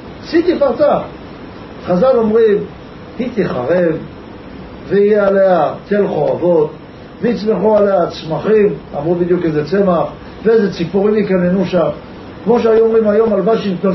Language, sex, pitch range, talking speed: Hebrew, male, 180-225 Hz, 115 wpm